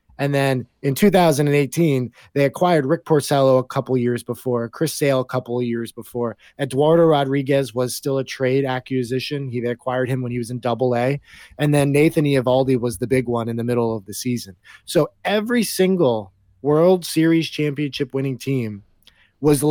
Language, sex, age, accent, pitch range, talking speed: English, male, 30-49, American, 120-150 Hz, 170 wpm